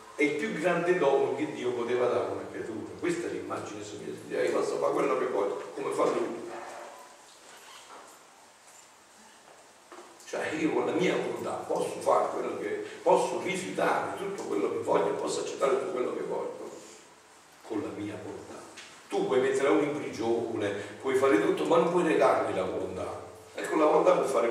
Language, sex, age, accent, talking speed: Italian, male, 50-69, native, 175 wpm